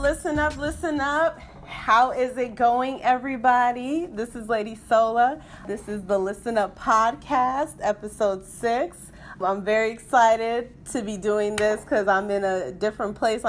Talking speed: 150 wpm